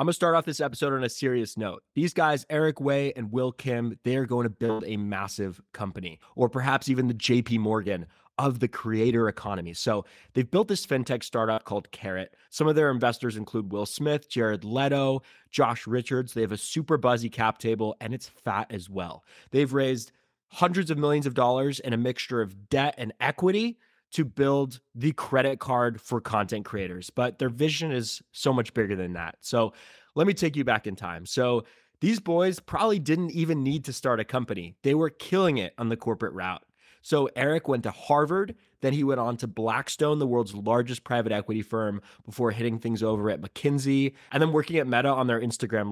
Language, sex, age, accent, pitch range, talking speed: English, male, 20-39, American, 110-140 Hz, 205 wpm